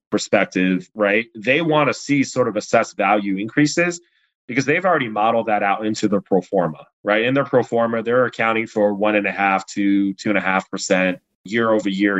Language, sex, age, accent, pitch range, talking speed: English, male, 30-49, American, 100-130 Hz, 205 wpm